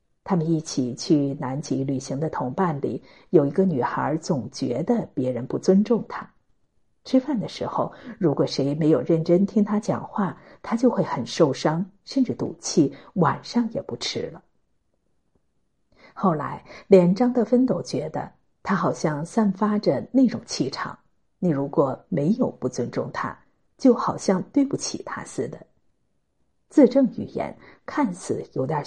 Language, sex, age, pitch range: Chinese, female, 50-69, 140-210 Hz